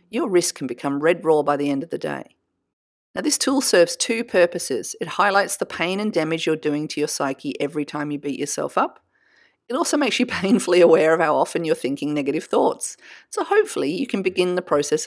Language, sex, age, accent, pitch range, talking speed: English, female, 40-59, Australian, 150-230 Hz, 220 wpm